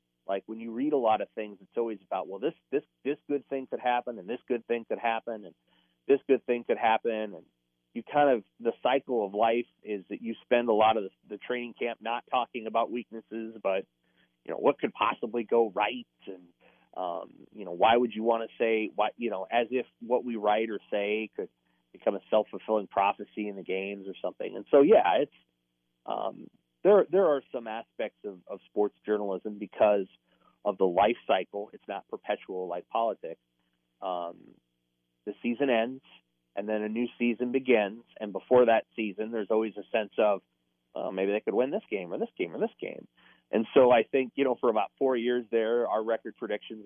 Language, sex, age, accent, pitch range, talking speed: English, male, 30-49, American, 95-120 Hz, 205 wpm